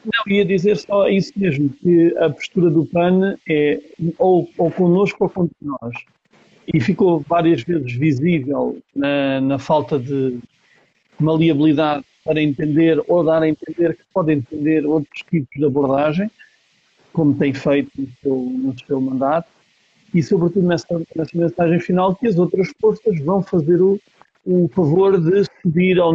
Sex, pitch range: male, 155-190 Hz